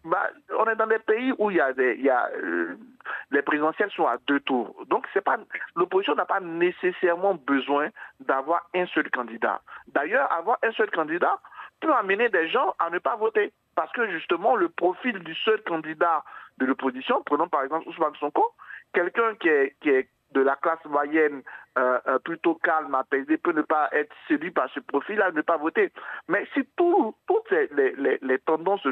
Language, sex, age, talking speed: French, male, 60-79, 195 wpm